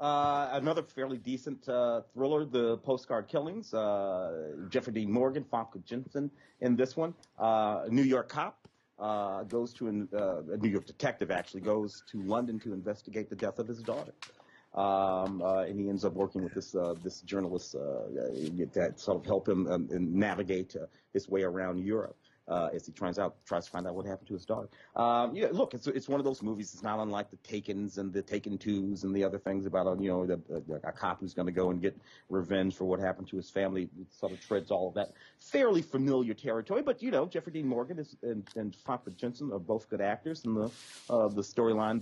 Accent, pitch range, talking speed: American, 95-120 Hz, 225 wpm